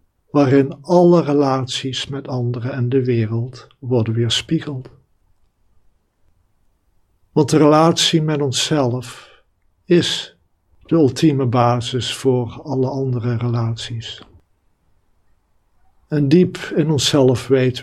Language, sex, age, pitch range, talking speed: Dutch, male, 60-79, 100-140 Hz, 95 wpm